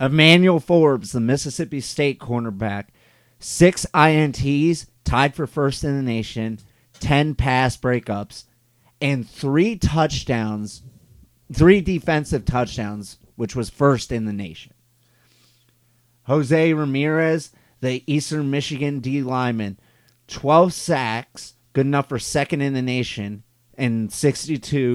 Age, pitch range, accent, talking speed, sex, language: 30-49, 120-150 Hz, American, 115 wpm, male, English